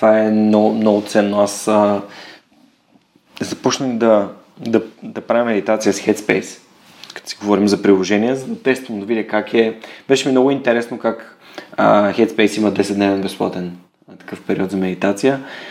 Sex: male